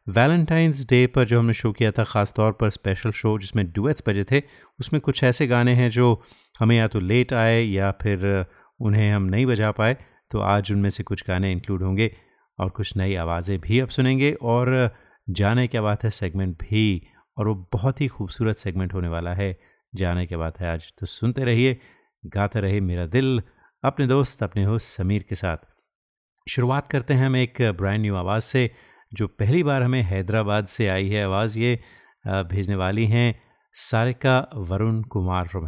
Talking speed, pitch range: 185 wpm, 100-120 Hz